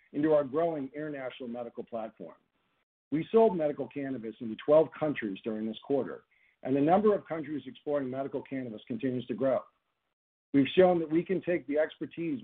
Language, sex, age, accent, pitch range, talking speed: English, male, 50-69, American, 120-170 Hz, 170 wpm